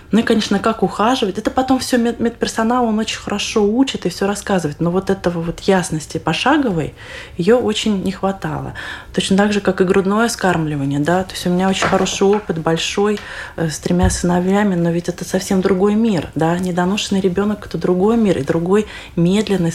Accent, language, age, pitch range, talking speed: native, Russian, 20-39, 170-205 Hz, 180 wpm